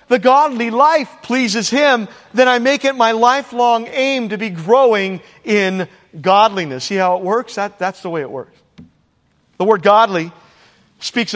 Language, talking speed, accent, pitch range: English, 160 wpm, American, 180-225 Hz